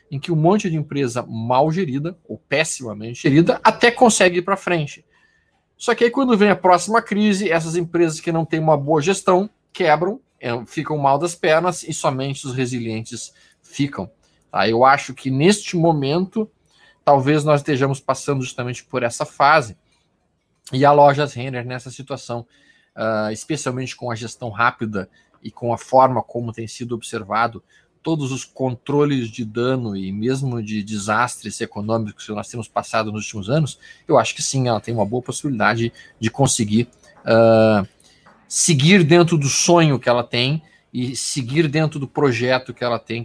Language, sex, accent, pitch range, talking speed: Portuguese, male, Brazilian, 115-160 Hz, 160 wpm